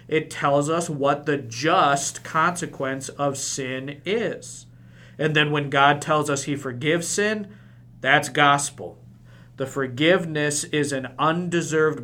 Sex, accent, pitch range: male, American, 130-175 Hz